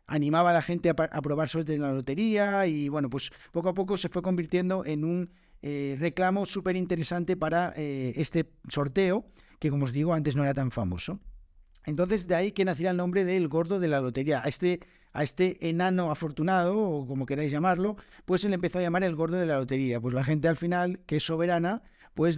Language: Spanish